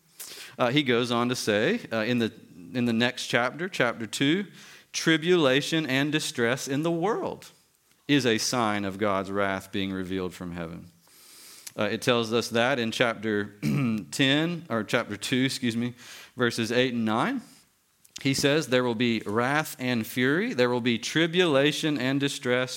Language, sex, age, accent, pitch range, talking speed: English, male, 40-59, American, 110-140 Hz, 165 wpm